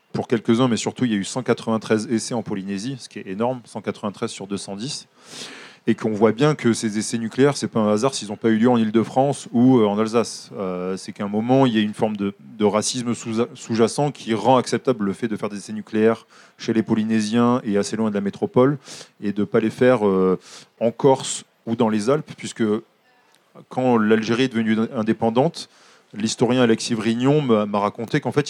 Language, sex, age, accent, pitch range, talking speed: French, male, 20-39, French, 105-125 Hz, 210 wpm